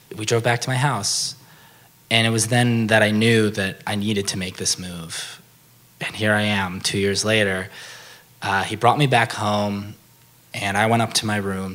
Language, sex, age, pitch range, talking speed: English, male, 20-39, 105-130 Hz, 205 wpm